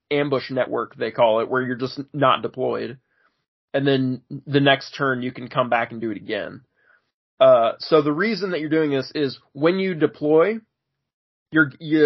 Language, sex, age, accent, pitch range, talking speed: English, male, 20-39, American, 125-150 Hz, 175 wpm